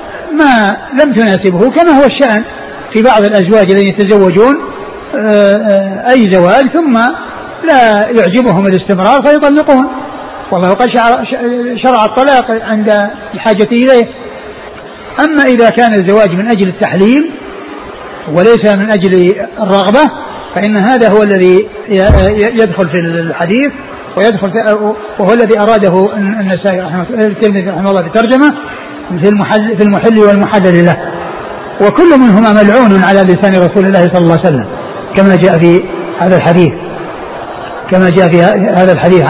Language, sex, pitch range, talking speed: Arabic, male, 190-225 Hz, 120 wpm